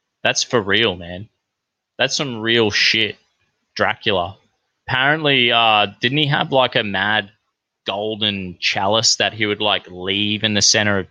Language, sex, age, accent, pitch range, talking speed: English, male, 20-39, Australian, 105-130 Hz, 150 wpm